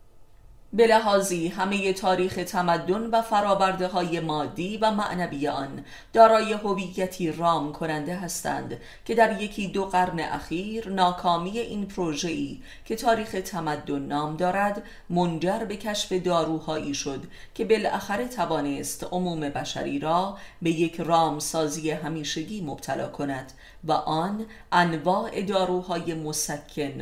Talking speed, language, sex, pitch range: 120 wpm, Persian, female, 150-190 Hz